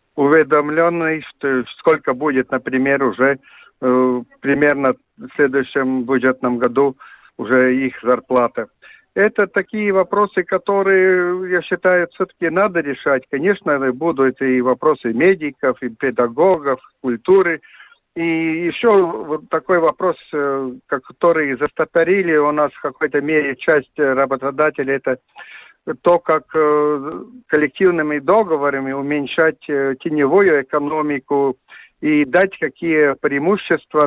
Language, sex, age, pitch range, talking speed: Russian, male, 60-79, 140-175 Hz, 100 wpm